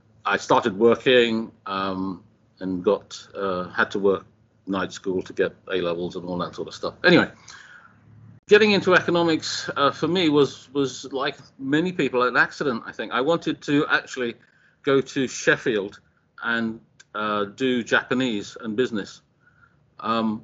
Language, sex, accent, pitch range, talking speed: English, male, British, 105-145 Hz, 155 wpm